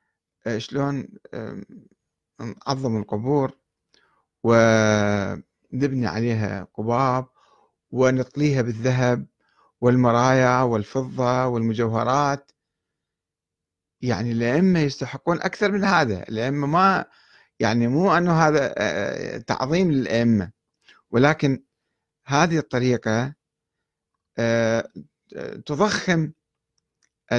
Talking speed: 65 wpm